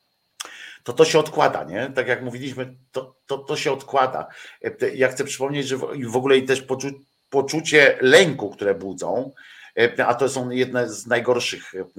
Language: Polish